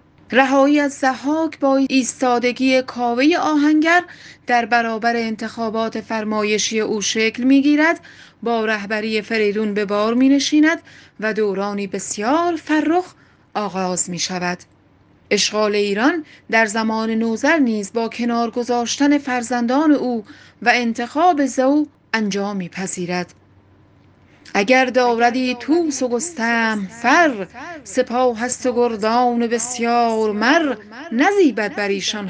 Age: 30-49